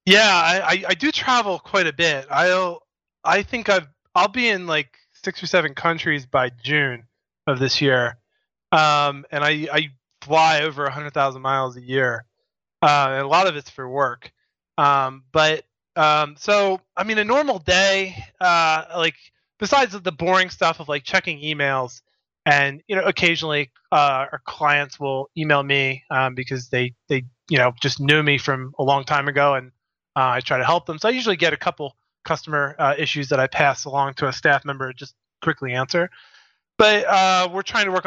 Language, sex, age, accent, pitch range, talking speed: English, male, 20-39, American, 140-175 Hz, 190 wpm